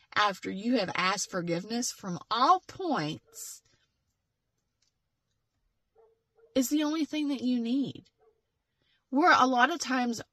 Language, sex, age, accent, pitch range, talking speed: English, female, 30-49, American, 180-265 Hz, 115 wpm